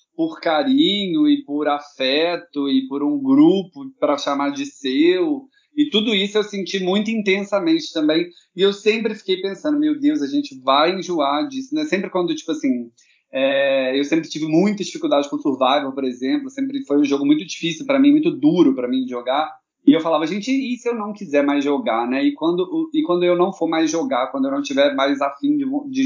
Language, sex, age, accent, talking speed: Portuguese, male, 20-39, Brazilian, 210 wpm